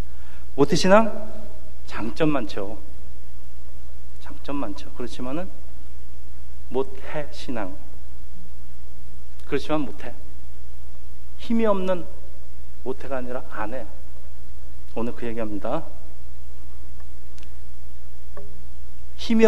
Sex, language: male, Korean